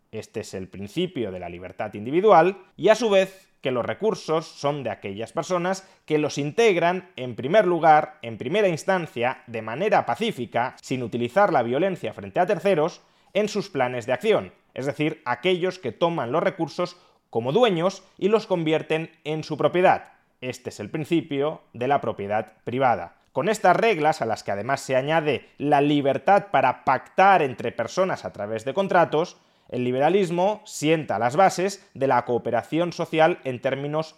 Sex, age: male, 30-49